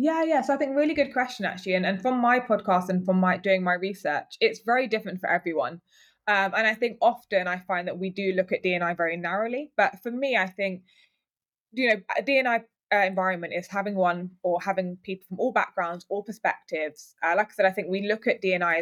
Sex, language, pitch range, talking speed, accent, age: female, English, 175-210 Hz, 230 wpm, British, 20-39